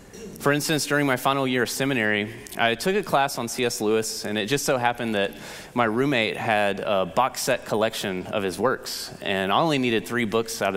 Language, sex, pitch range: English, male, 100-130 Hz